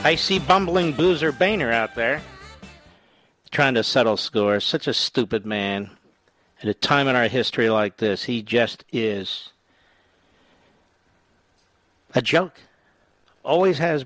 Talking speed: 130 wpm